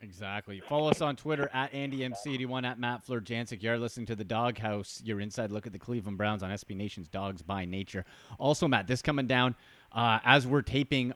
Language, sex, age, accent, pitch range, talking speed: English, male, 30-49, American, 110-140 Hz, 210 wpm